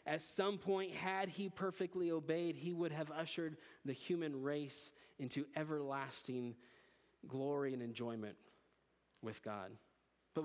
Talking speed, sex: 125 wpm, male